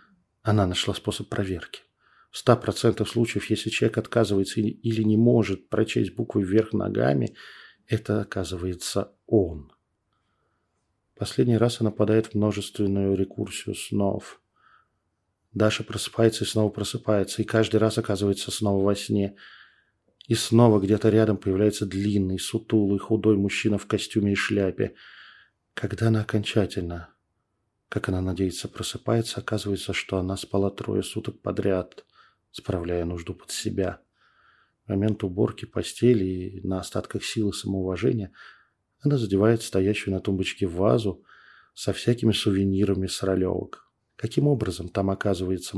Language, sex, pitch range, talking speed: Russian, male, 95-110 Hz, 125 wpm